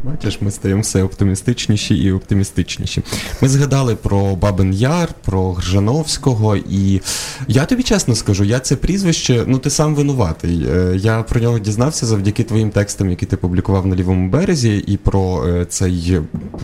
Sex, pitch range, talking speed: male, 90-110 Hz, 150 wpm